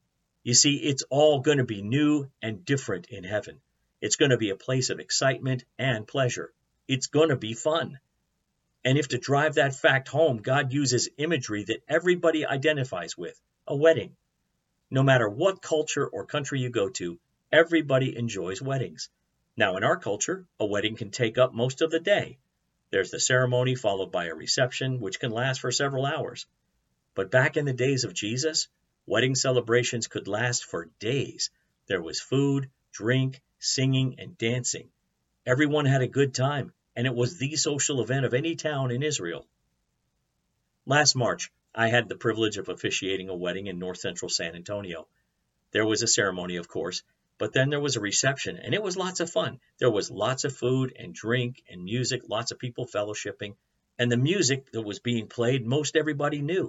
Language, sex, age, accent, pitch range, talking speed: English, male, 50-69, American, 115-145 Hz, 180 wpm